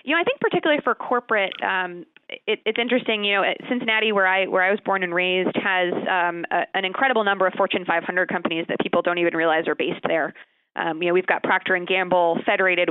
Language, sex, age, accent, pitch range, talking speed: English, female, 20-39, American, 175-210 Hz, 235 wpm